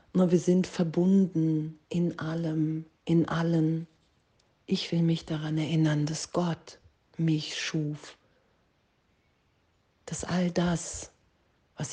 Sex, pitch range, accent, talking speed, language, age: female, 150-165 Hz, German, 105 wpm, German, 40-59